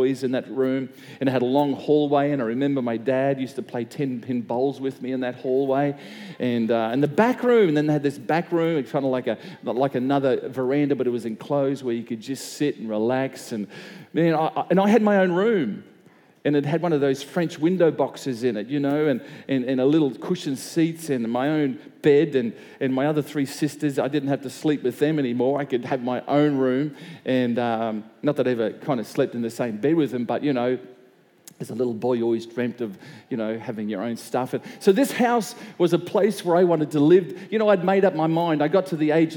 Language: English